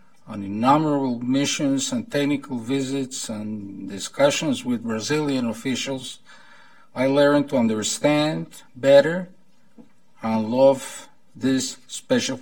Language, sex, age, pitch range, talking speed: English, male, 50-69, 125-200 Hz, 95 wpm